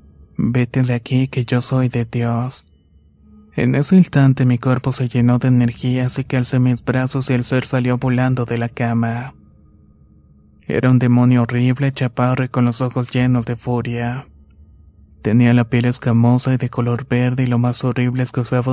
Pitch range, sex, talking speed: 105-125 Hz, male, 180 wpm